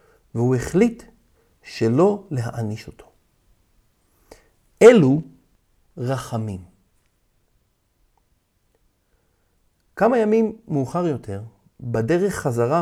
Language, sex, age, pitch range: Hebrew, male, 50-69, 120-195 Hz